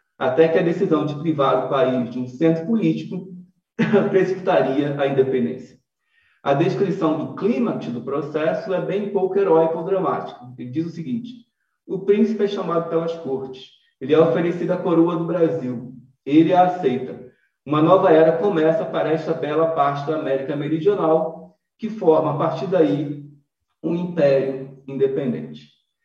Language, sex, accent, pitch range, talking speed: Portuguese, male, Brazilian, 140-180 Hz, 150 wpm